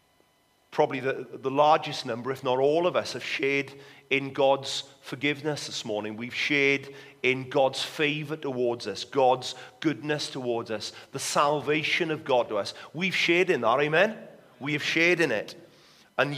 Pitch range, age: 135-165 Hz, 40-59